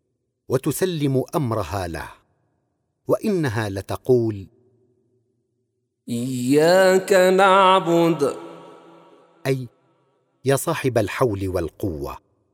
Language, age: Arabic, 50-69